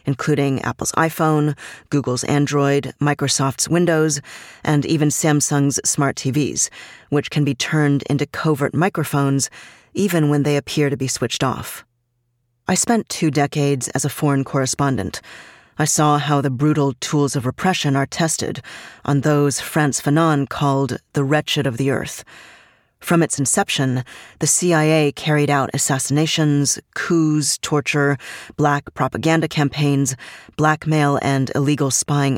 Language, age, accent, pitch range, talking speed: English, 40-59, American, 135-150 Hz, 135 wpm